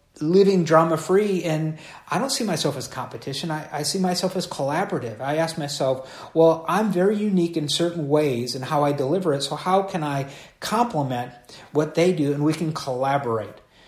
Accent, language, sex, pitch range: American, English, male, 130-175 Hz